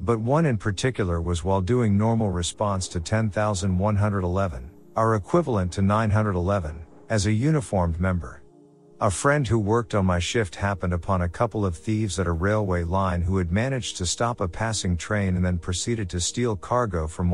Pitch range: 90-115 Hz